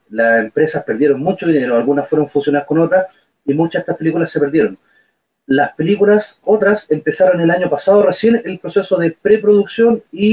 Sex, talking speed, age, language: male, 175 wpm, 30-49, Spanish